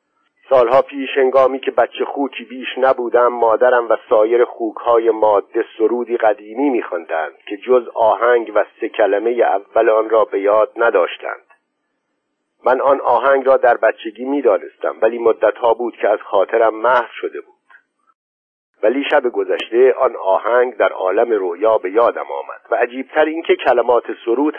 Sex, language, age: male, Persian, 50-69